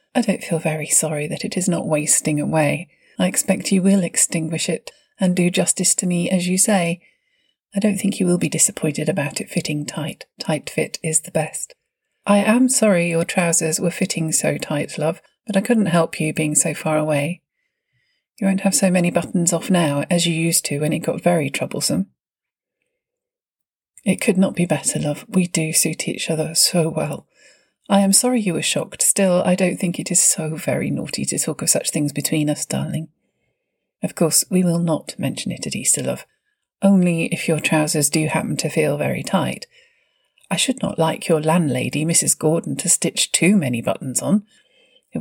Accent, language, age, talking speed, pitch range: British, English, 40-59, 195 wpm, 160-195 Hz